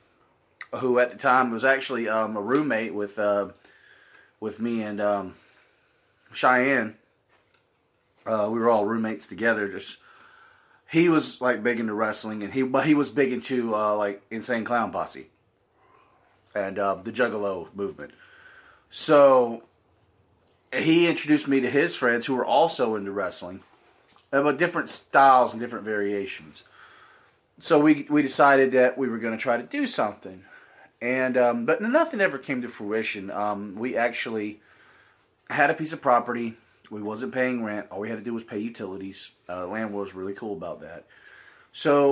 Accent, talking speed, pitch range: American, 160 wpm, 105-145 Hz